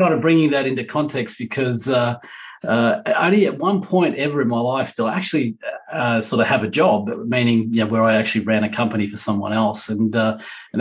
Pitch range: 110-120 Hz